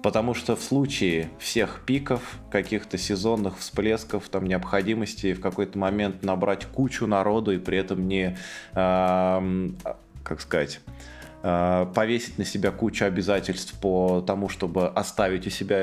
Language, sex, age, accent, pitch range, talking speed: Russian, male, 20-39, native, 90-105 Hz, 135 wpm